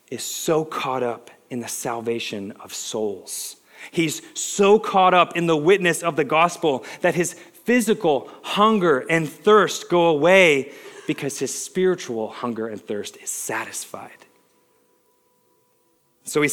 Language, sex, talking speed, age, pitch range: English, male, 135 wpm, 30-49, 140-200 Hz